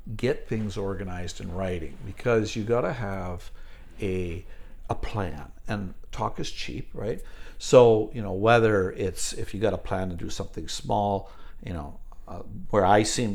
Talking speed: 170 wpm